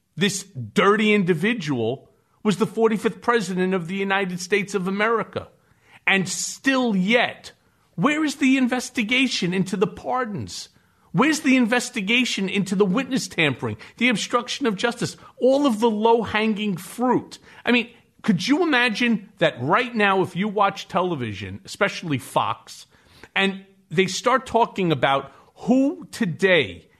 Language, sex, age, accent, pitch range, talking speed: English, male, 40-59, American, 175-235 Hz, 135 wpm